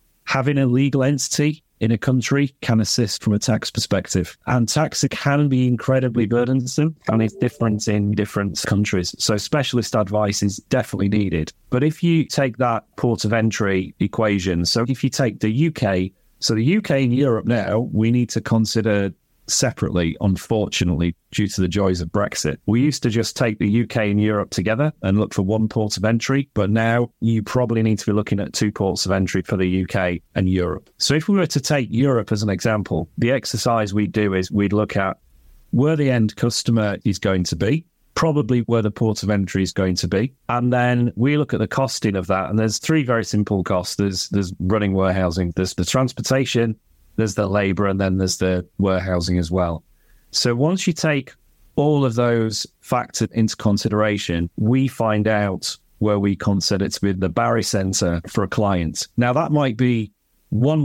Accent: British